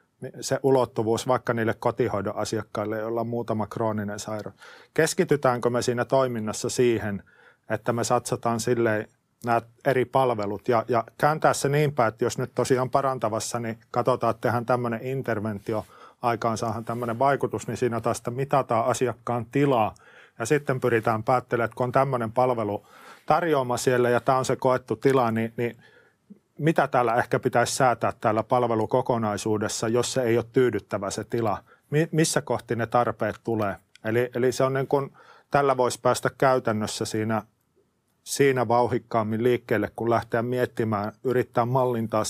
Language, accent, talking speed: English, Finnish, 150 wpm